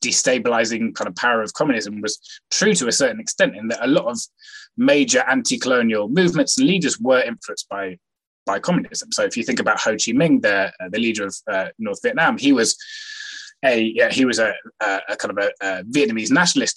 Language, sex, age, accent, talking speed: English, male, 20-39, British, 205 wpm